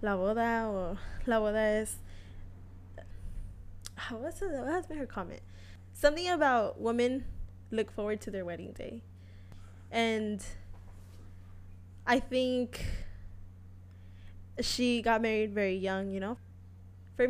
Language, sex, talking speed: English, female, 110 wpm